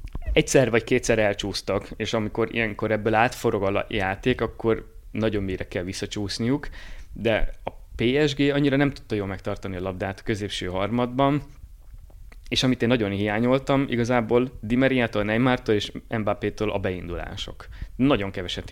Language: Hungarian